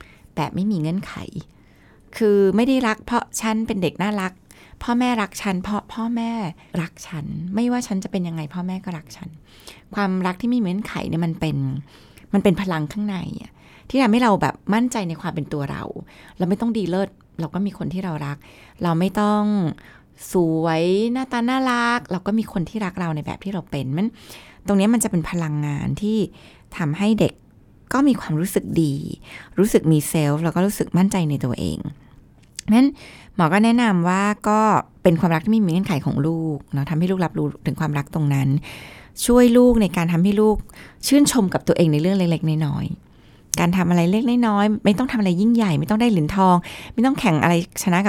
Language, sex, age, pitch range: Thai, female, 20-39, 160-215 Hz